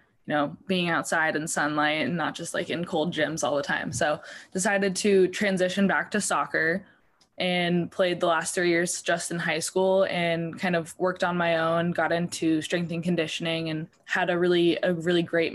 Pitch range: 160-185 Hz